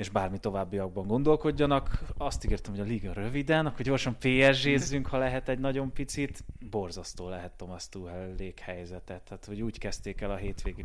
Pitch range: 95-115 Hz